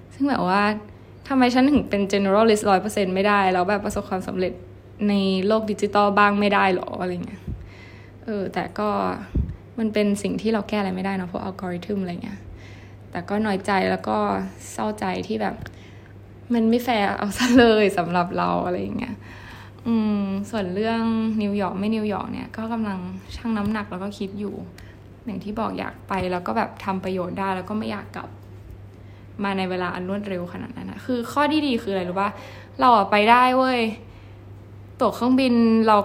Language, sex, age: Thai, female, 20-39